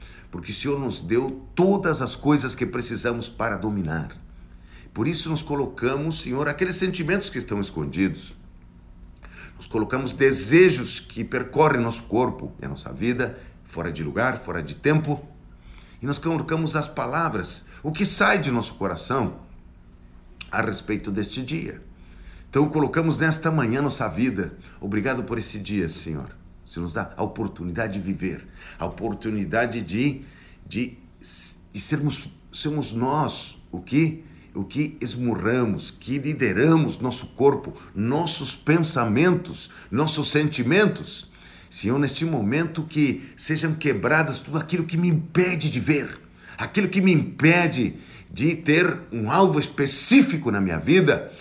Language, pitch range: Portuguese, 100-155 Hz